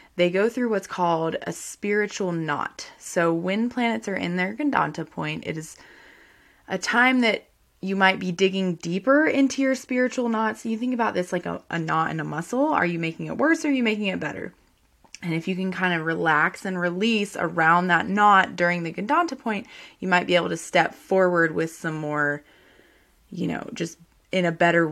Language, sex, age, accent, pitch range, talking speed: English, female, 20-39, American, 170-225 Hz, 205 wpm